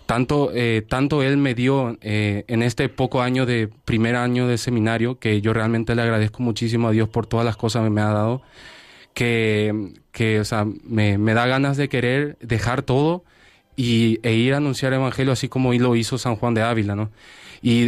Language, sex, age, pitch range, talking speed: Spanish, male, 20-39, 110-125 Hz, 205 wpm